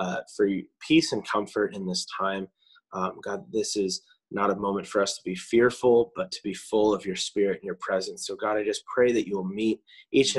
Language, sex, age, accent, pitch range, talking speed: English, male, 20-39, American, 95-115 Hz, 235 wpm